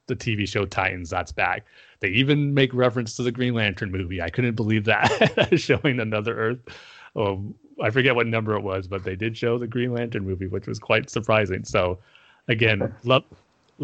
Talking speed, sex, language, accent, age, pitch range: 185 wpm, male, English, American, 30-49, 100-125 Hz